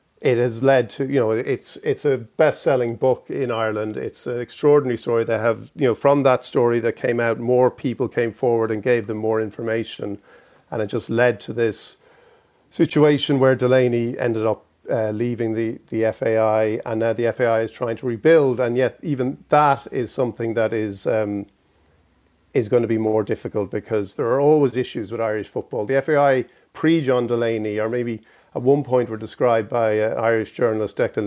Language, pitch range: English, 110-130 Hz